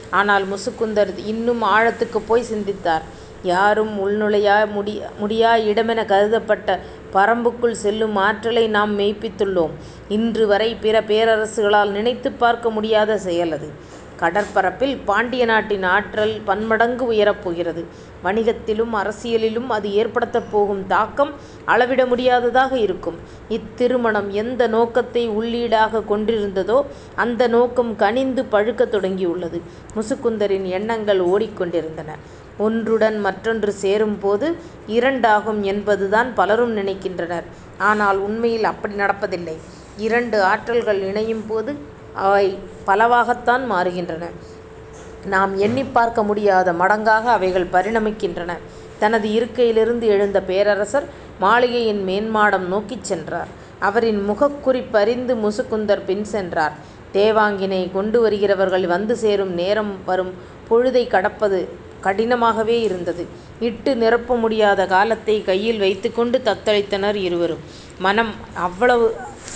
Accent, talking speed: native, 95 wpm